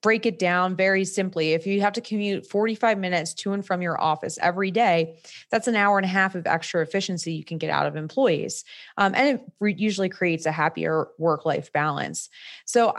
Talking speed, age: 205 wpm, 20-39